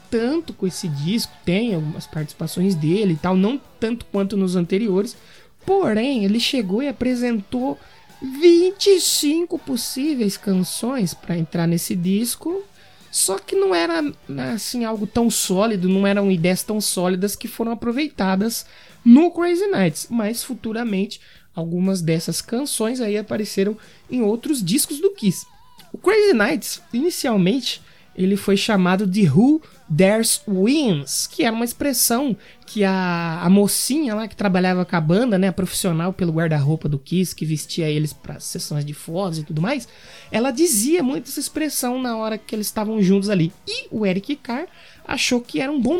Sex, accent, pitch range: male, Brazilian, 185-250 Hz